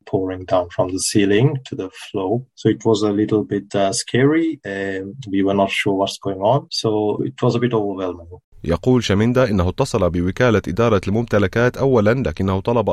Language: Arabic